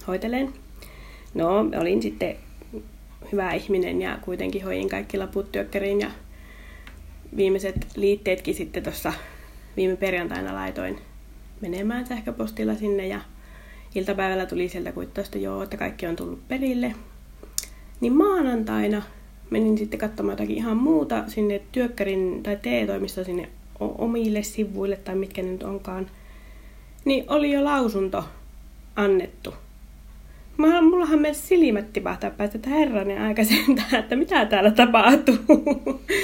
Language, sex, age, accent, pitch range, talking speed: Finnish, female, 20-39, native, 170-230 Hz, 120 wpm